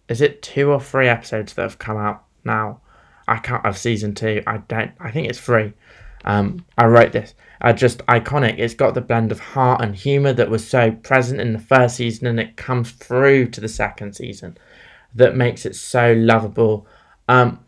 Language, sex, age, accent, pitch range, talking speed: English, male, 20-39, British, 110-130 Hz, 200 wpm